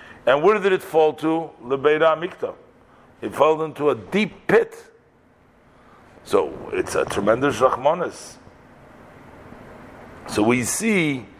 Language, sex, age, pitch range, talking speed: English, male, 50-69, 130-170 Hz, 115 wpm